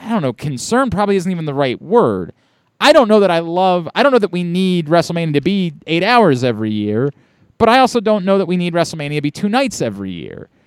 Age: 30-49